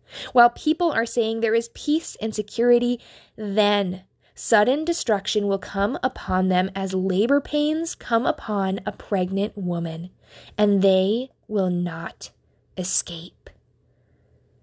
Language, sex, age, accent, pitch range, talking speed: English, female, 10-29, American, 195-245 Hz, 120 wpm